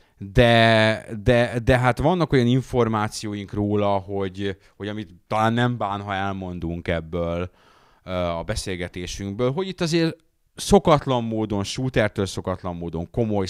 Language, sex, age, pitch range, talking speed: English, male, 30-49, 90-120 Hz, 125 wpm